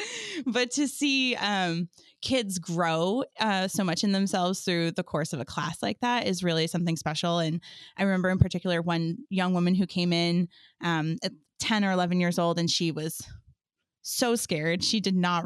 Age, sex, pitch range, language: 20-39, female, 170-195 Hz, English